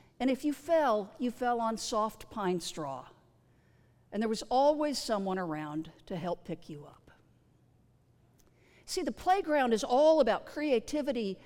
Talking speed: 145 wpm